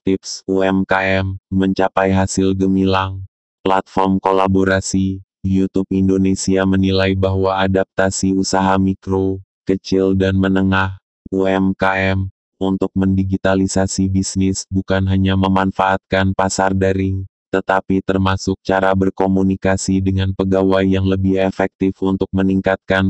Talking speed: 95 wpm